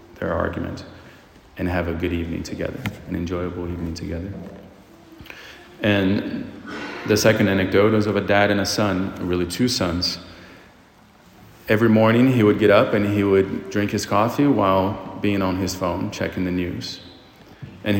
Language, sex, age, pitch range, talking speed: English, male, 30-49, 90-105 Hz, 155 wpm